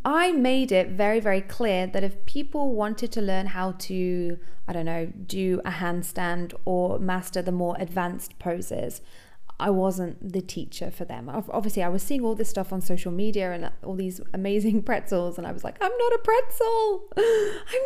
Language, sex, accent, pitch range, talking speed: English, female, British, 185-250 Hz, 190 wpm